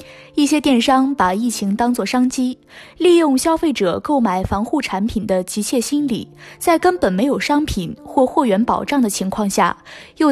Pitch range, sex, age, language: 205-285 Hz, female, 20-39, Chinese